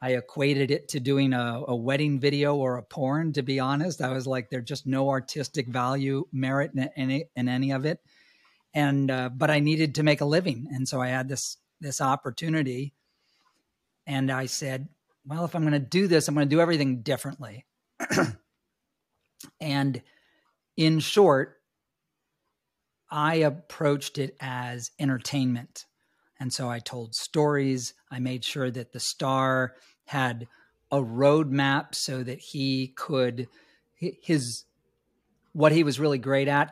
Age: 40-59